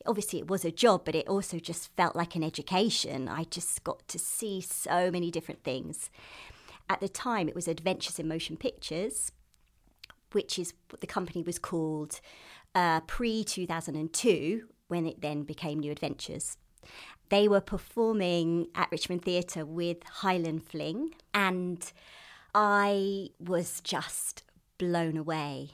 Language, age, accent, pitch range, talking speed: English, 30-49, British, 160-200 Hz, 140 wpm